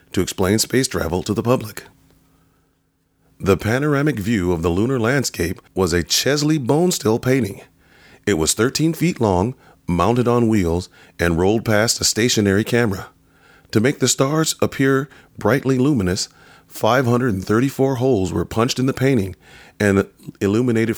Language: English